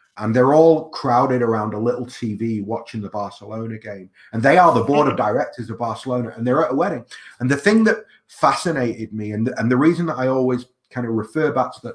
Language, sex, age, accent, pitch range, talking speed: English, male, 30-49, British, 110-135 Hz, 225 wpm